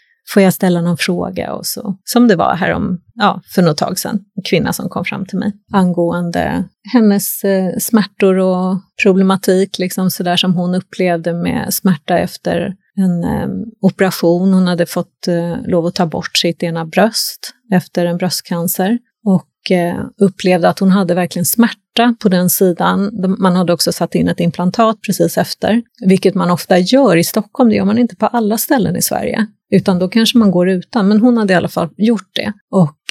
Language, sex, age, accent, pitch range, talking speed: Swedish, female, 30-49, native, 180-225 Hz, 190 wpm